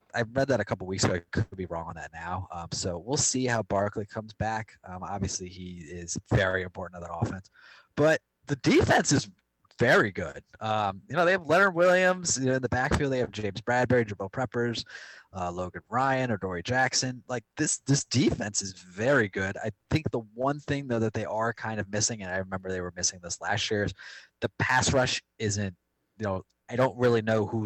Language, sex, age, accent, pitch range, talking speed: English, male, 20-39, American, 95-125 Hz, 220 wpm